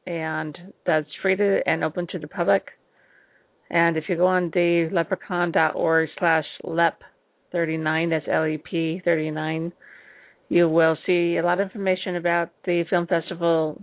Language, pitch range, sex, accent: English, 160-180 Hz, female, American